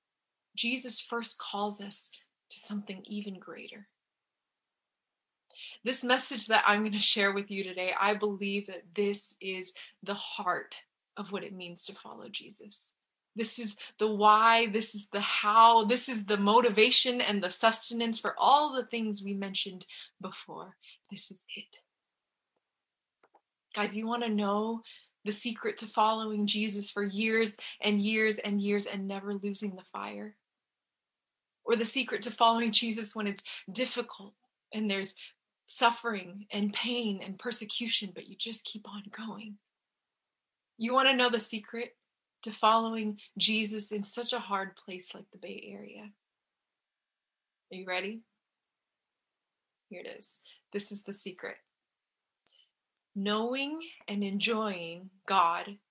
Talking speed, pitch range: 140 wpm, 200-230 Hz